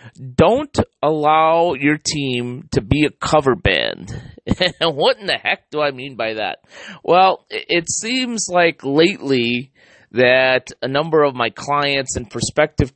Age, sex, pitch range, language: 30-49, male, 120-155 Hz, English